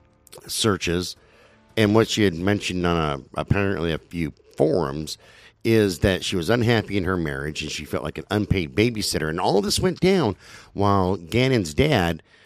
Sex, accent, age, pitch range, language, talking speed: male, American, 50-69, 85-125 Hz, English, 175 wpm